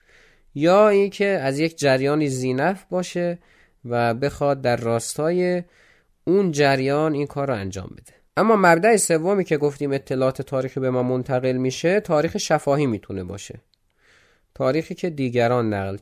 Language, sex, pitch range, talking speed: Persian, male, 130-165 Hz, 140 wpm